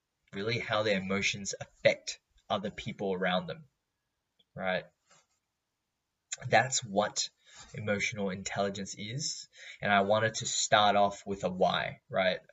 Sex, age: male, 20-39